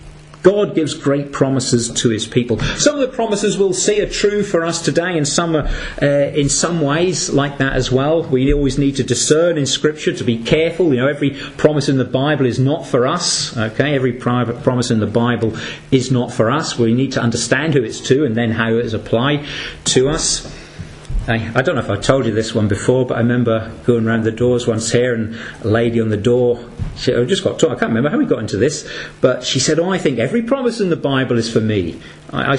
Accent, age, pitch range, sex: British, 40-59, 115-150 Hz, male